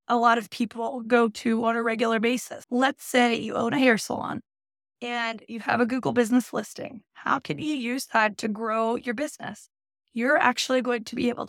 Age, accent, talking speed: 20-39, American, 205 wpm